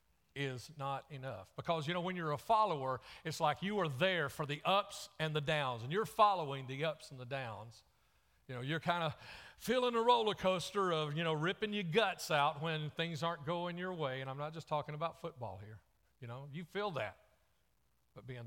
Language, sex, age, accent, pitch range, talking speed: English, male, 40-59, American, 105-155 Hz, 215 wpm